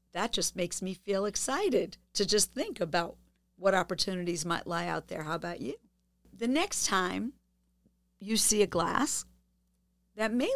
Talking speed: 160 wpm